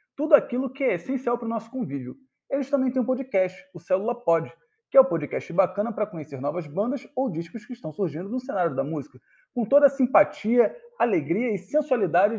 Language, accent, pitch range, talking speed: Portuguese, Brazilian, 175-260 Hz, 205 wpm